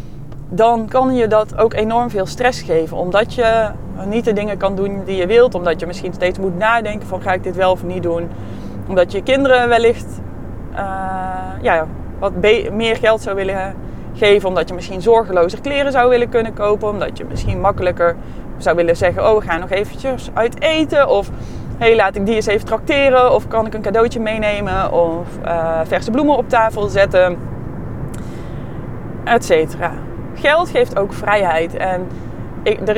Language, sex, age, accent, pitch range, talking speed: Dutch, female, 20-39, Dutch, 170-225 Hz, 175 wpm